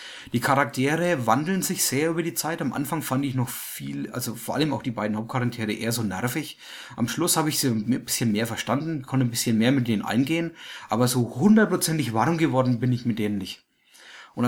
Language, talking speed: English, 210 wpm